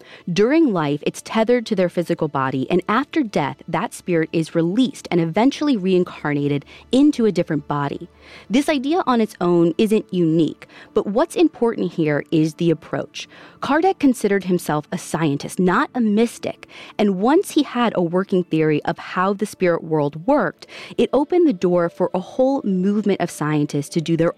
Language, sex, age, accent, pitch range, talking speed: English, female, 30-49, American, 155-225 Hz, 170 wpm